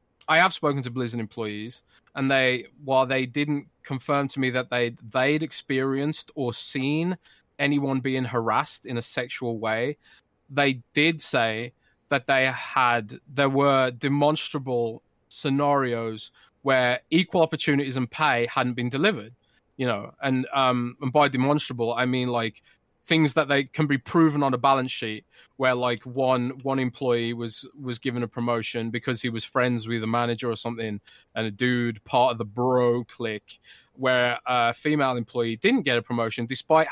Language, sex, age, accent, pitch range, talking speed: English, male, 20-39, British, 115-140 Hz, 165 wpm